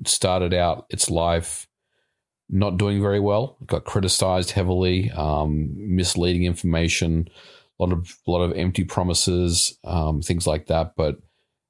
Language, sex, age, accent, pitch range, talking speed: English, male, 40-59, Australian, 80-100 Hz, 145 wpm